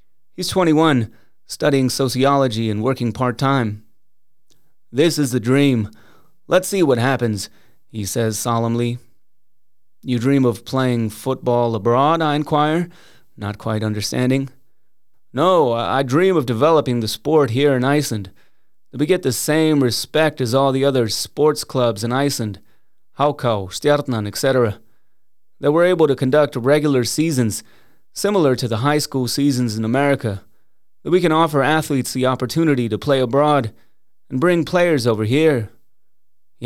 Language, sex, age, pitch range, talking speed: English, male, 30-49, 115-145 Hz, 140 wpm